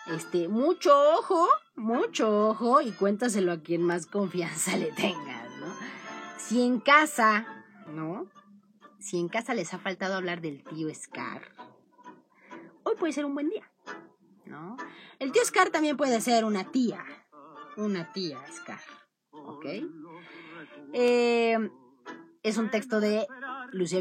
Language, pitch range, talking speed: Spanish, 175-265 Hz, 130 wpm